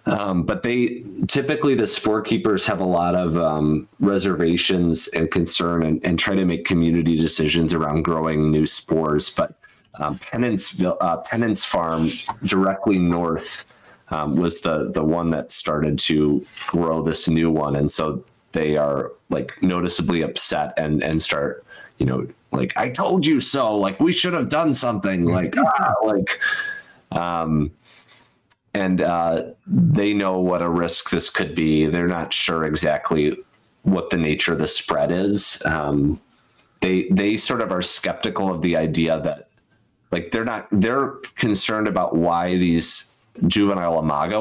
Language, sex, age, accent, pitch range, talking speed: English, male, 30-49, American, 80-95 Hz, 155 wpm